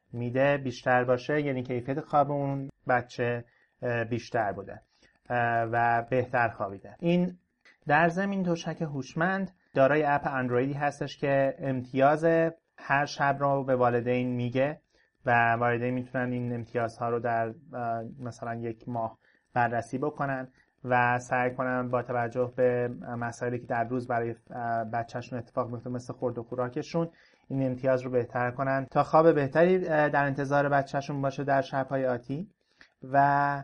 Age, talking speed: 30-49, 135 wpm